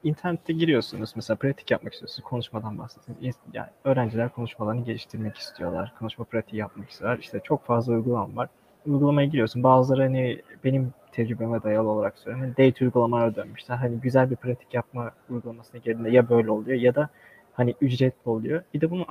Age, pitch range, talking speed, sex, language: 20-39, 115-135 Hz, 165 wpm, male, Turkish